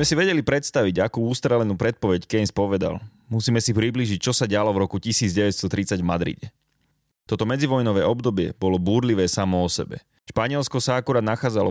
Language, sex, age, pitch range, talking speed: Slovak, male, 30-49, 95-120 Hz, 160 wpm